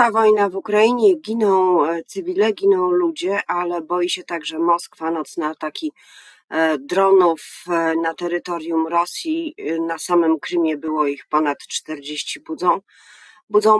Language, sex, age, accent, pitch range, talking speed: Polish, female, 40-59, native, 150-195 Hz, 115 wpm